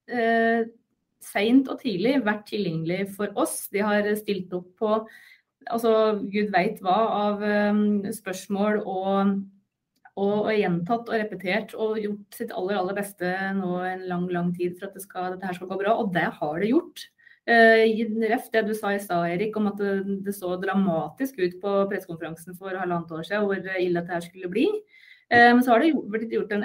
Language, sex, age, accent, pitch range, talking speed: English, female, 20-39, Swedish, 190-235 Hz, 195 wpm